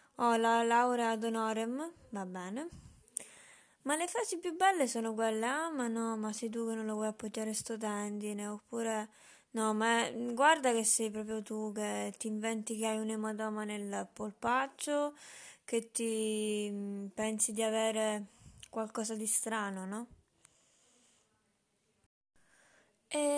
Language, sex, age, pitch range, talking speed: Italian, female, 20-39, 215-245 Hz, 140 wpm